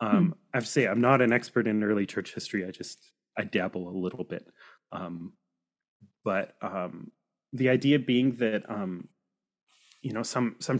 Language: English